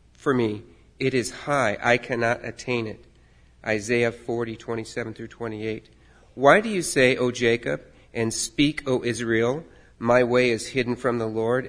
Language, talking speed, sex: English, 170 wpm, male